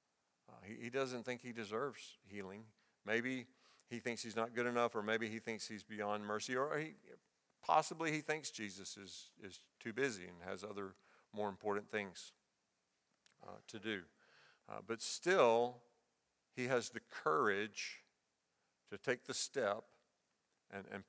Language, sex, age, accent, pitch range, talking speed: English, male, 50-69, American, 105-120 Hz, 150 wpm